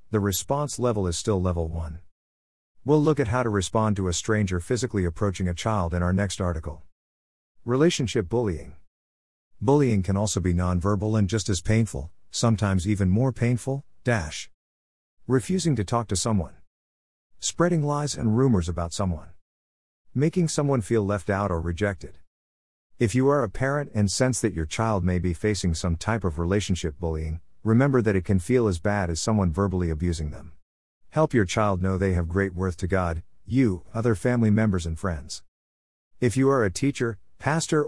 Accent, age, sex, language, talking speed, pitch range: American, 50-69, male, English, 175 wpm, 85-115 Hz